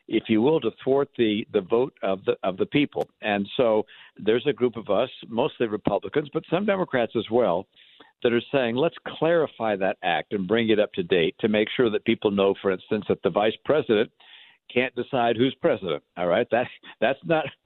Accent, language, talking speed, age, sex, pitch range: American, English, 205 wpm, 60-79, male, 105-130 Hz